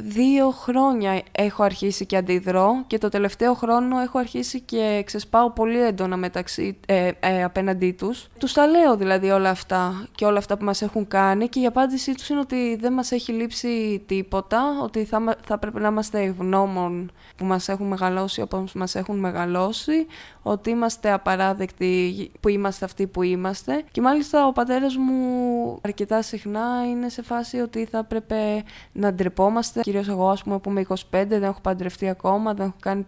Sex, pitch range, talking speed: female, 195-240 Hz, 170 wpm